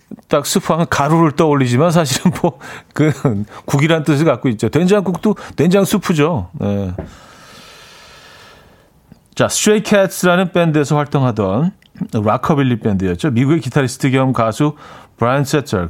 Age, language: 40-59, Korean